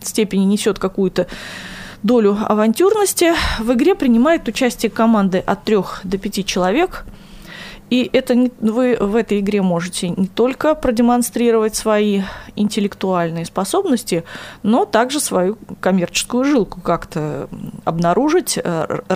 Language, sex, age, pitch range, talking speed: Russian, female, 20-39, 185-245 Hz, 115 wpm